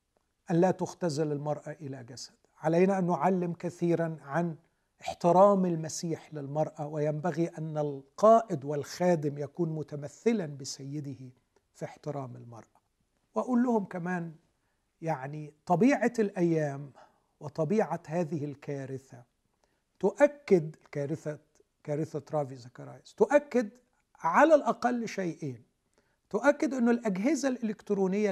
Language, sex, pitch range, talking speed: Arabic, male, 150-205 Hz, 95 wpm